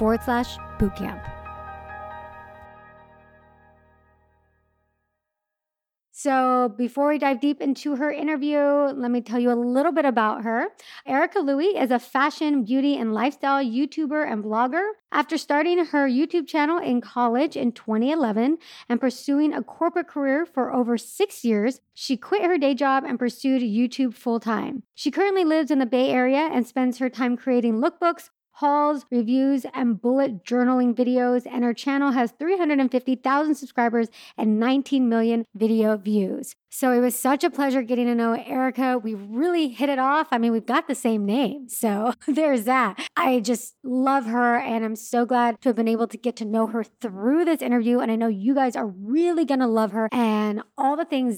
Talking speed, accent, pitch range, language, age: 170 wpm, American, 230-275 Hz, English, 40-59